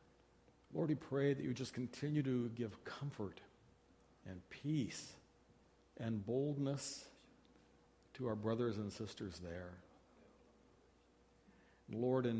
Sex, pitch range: male, 95-125 Hz